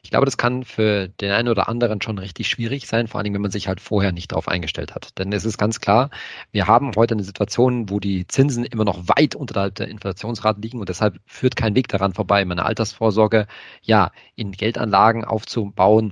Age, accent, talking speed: 40-59, German, 220 wpm